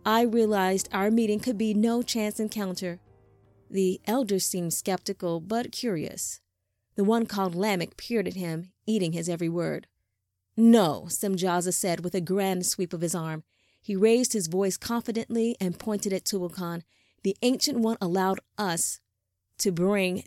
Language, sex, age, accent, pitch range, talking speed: English, female, 30-49, American, 175-215 Hz, 155 wpm